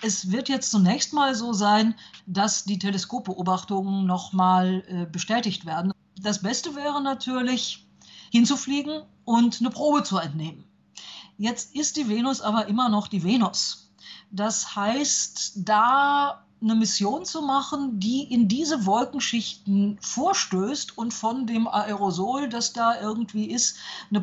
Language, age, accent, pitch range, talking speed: German, 50-69, German, 200-245 Hz, 135 wpm